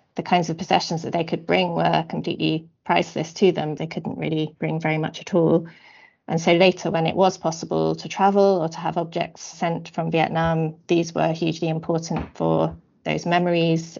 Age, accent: 30-49, British